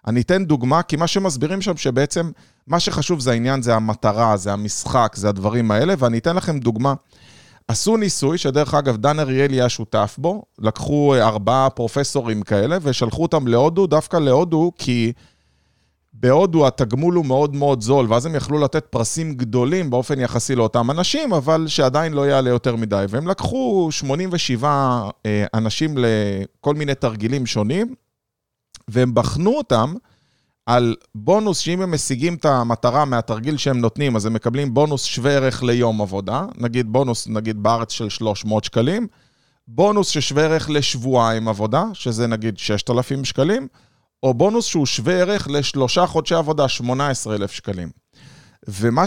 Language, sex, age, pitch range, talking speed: Hebrew, male, 30-49, 115-155 Hz, 145 wpm